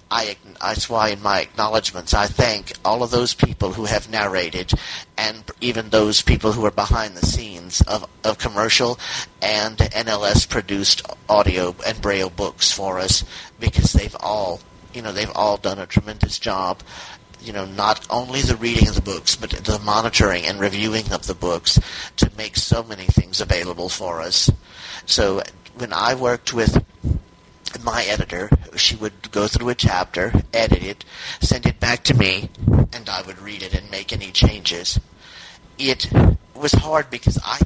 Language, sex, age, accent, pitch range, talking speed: English, male, 50-69, American, 95-110 Hz, 170 wpm